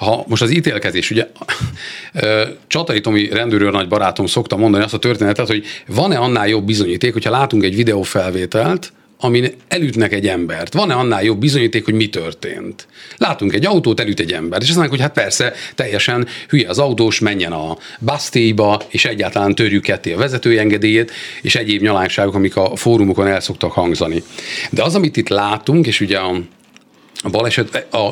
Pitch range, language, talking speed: 100-120 Hz, Hungarian, 165 wpm